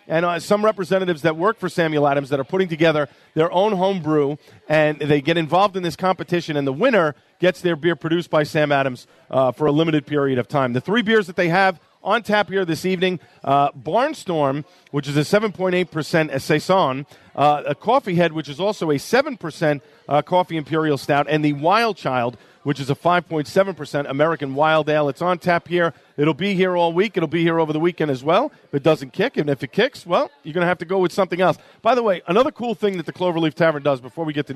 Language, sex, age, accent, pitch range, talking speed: English, male, 40-59, American, 145-185 Hz, 225 wpm